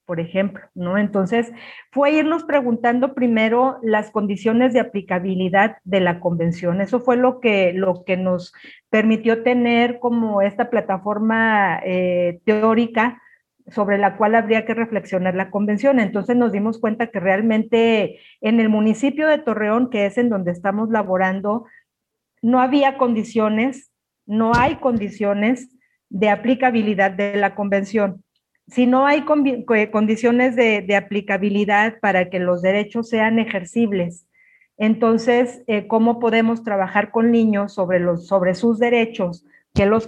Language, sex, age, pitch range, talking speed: Spanish, female, 40-59, 200-240 Hz, 135 wpm